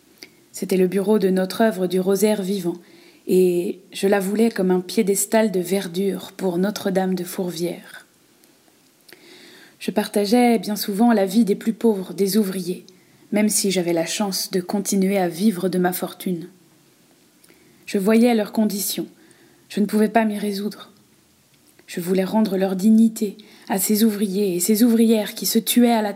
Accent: French